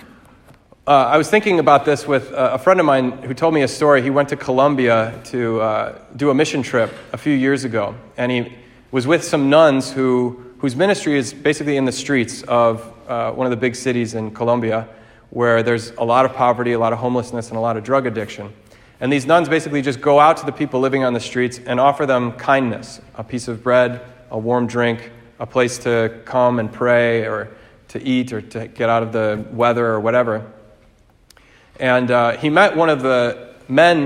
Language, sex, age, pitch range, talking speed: English, male, 30-49, 115-140 Hz, 215 wpm